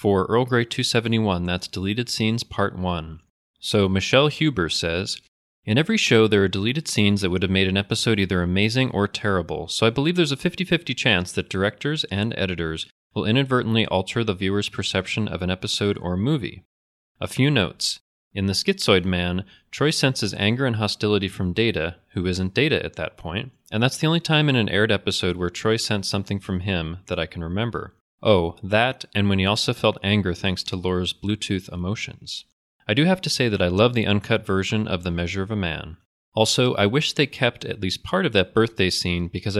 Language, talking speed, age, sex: English, 205 wpm, 30-49, male